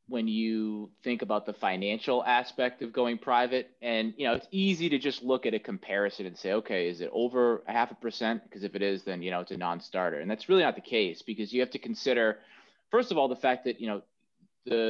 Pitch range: 110-130 Hz